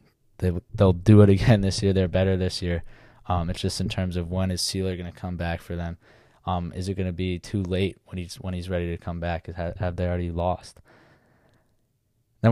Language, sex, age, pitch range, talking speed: English, male, 20-39, 90-110 Hz, 230 wpm